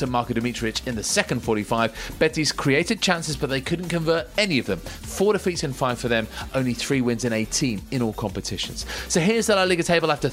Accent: British